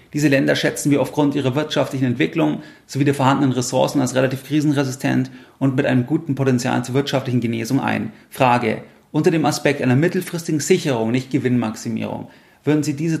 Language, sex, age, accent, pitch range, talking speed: German, male, 30-49, German, 130-150 Hz, 165 wpm